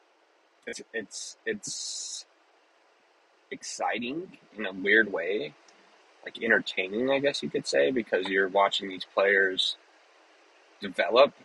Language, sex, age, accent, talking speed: English, male, 20-39, American, 110 wpm